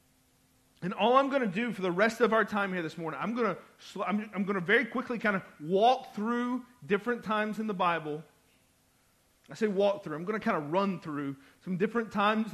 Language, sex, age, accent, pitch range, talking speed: English, male, 40-59, American, 170-225 Hz, 230 wpm